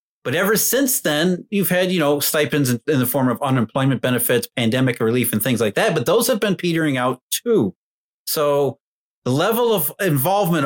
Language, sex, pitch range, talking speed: English, male, 125-165 Hz, 185 wpm